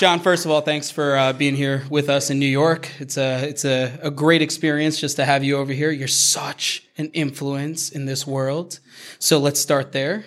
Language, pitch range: English, 140-155 Hz